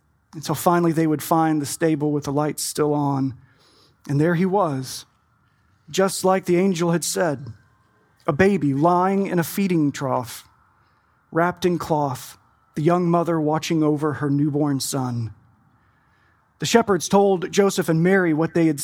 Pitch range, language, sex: 135-185 Hz, English, male